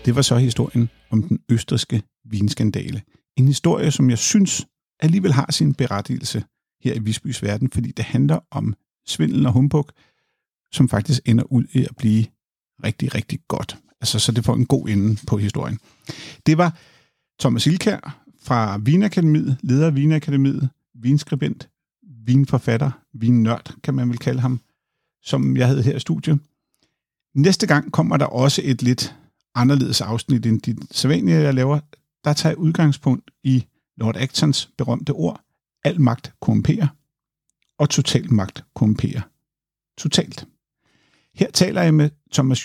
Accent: native